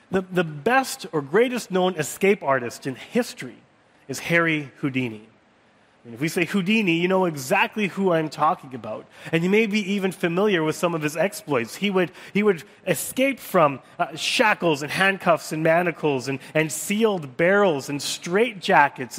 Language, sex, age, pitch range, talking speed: English, male, 30-49, 145-190 Hz, 170 wpm